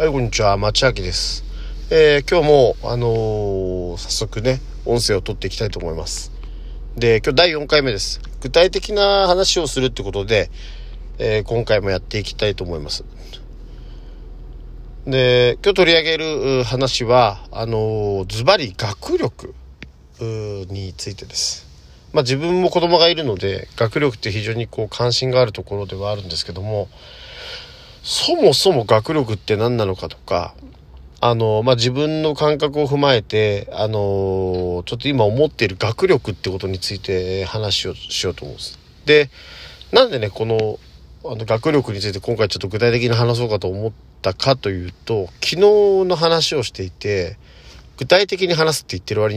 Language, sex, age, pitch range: Japanese, male, 40-59, 95-140 Hz